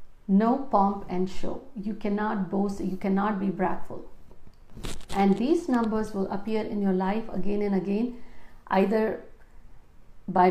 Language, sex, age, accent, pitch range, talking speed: Hindi, female, 50-69, native, 190-230 Hz, 135 wpm